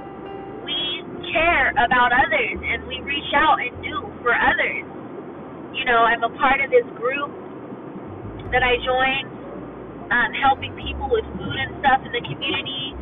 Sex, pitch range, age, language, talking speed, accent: female, 245-340 Hz, 20-39, English, 145 wpm, American